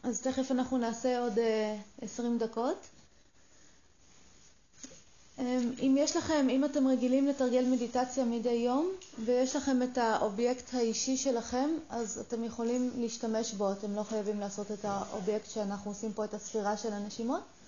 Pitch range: 210-250 Hz